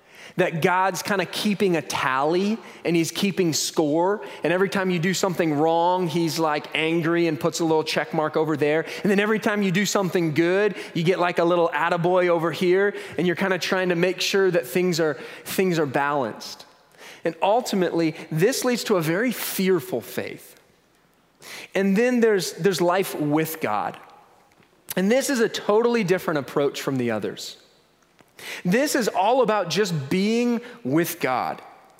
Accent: American